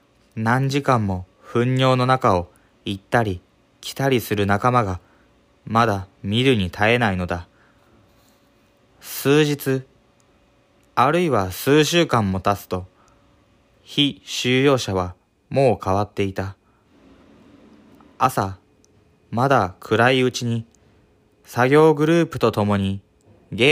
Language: Japanese